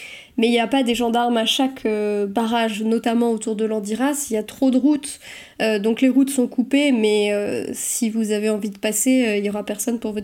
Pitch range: 220-255 Hz